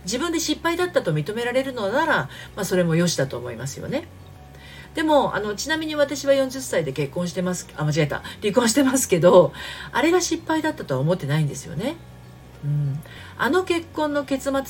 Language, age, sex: Japanese, 50-69, female